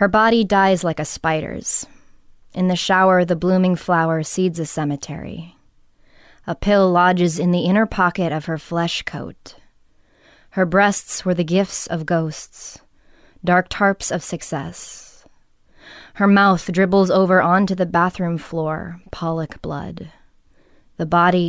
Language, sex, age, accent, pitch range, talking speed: English, female, 20-39, American, 165-190 Hz, 135 wpm